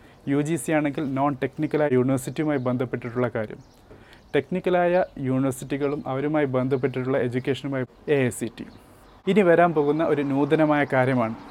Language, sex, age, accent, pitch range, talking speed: Malayalam, male, 30-49, native, 130-155 Hz, 125 wpm